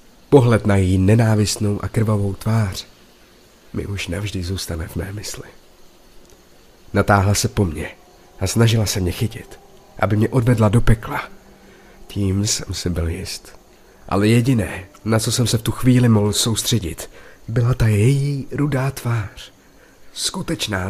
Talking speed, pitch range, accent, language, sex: 145 wpm, 100-120 Hz, native, Czech, male